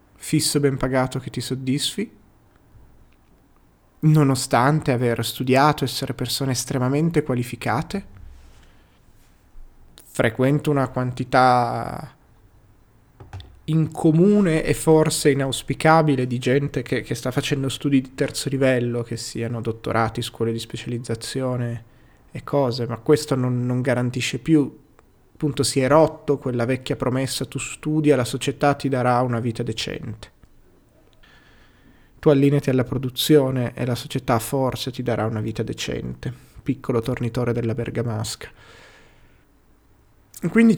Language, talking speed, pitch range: Italian, 115 wpm, 115-145 Hz